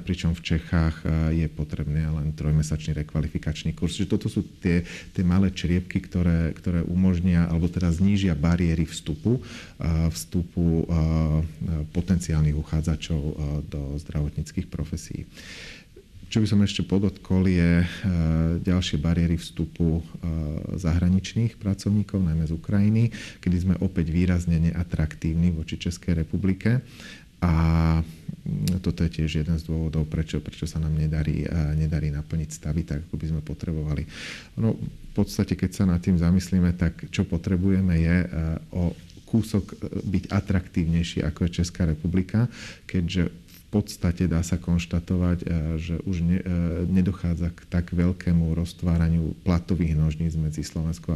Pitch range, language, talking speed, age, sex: 80-95 Hz, Slovak, 130 wpm, 40-59, male